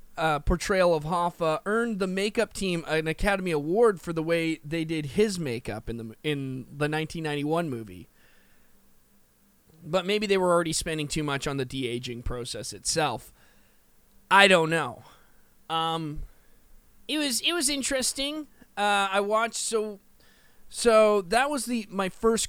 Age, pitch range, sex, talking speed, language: 20-39, 145-215 Hz, male, 150 wpm, English